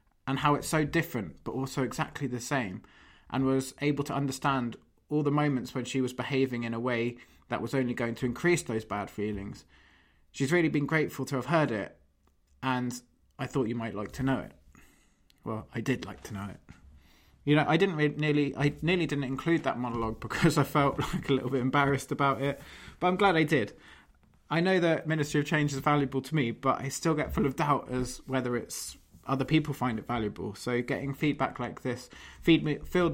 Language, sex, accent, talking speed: English, male, British, 210 wpm